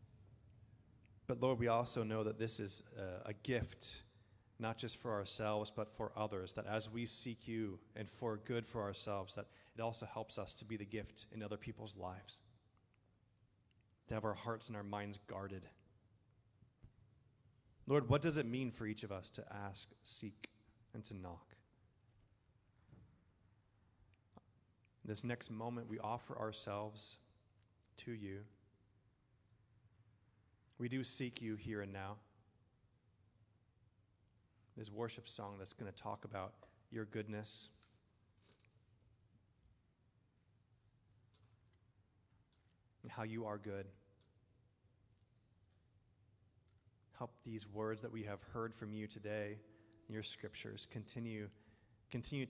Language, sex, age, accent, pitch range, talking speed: English, male, 30-49, American, 105-115 Hz, 125 wpm